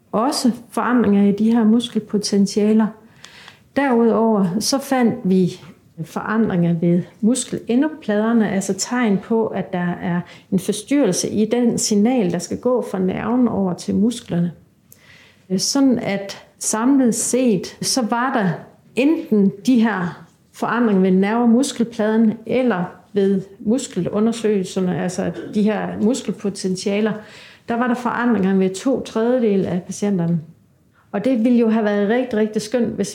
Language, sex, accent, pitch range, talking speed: Danish, female, native, 190-230 Hz, 130 wpm